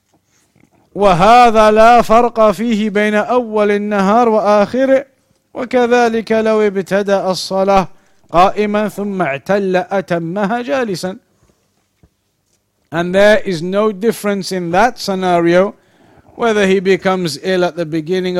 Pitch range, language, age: 175-205 Hz, English, 50-69